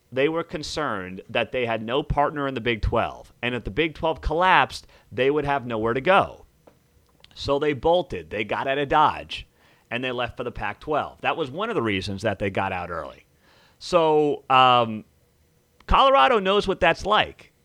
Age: 30-49